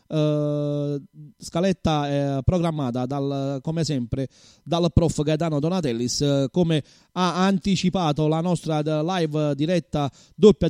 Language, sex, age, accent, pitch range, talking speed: Italian, male, 30-49, native, 145-180 Hz, 120 wpm